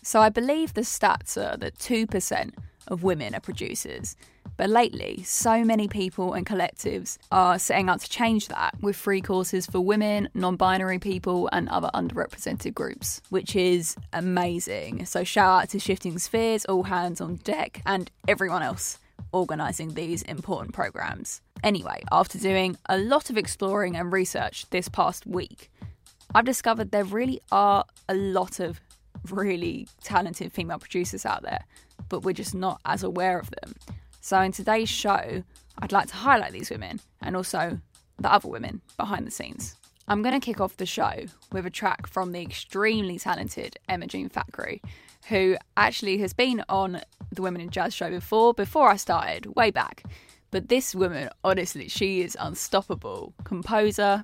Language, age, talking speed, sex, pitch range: English, 10-29, 165 wpm, female, 185-215 Hz